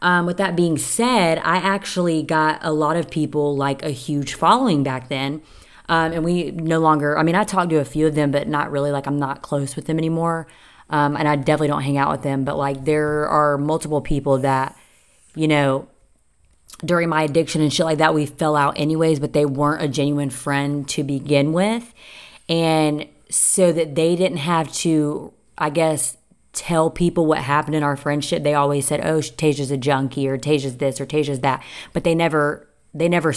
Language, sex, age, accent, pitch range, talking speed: English, female, 20-39, American, 140-160 Hz, 205 wpm